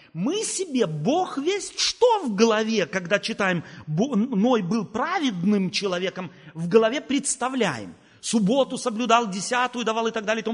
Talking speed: 130 wpm